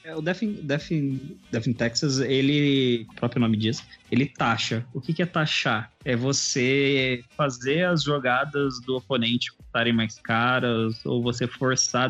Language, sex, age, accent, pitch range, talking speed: Portuguese, male, 20-39, Brazilian, 115-135 Hz, 165 wpm